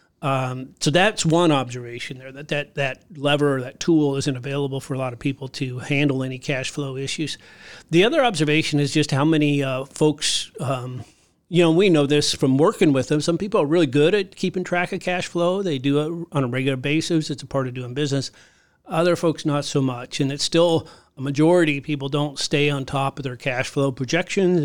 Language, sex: English, male